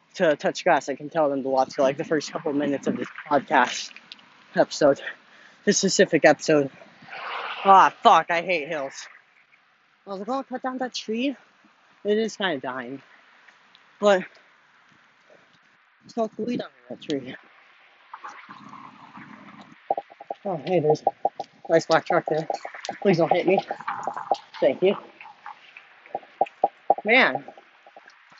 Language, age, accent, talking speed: English, 30-49, American, 135 wpm